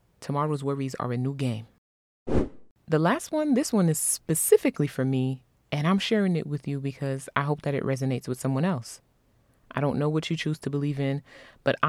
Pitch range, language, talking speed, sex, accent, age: 145-175 Hz, English, 200 wpm, female, American, 20-39